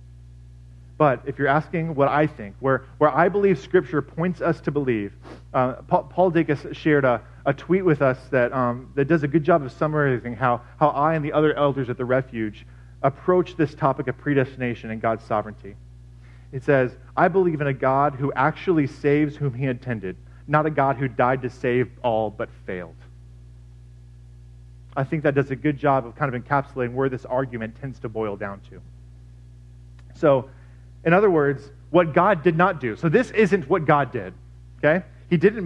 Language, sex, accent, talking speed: English, male, American, 190 wpm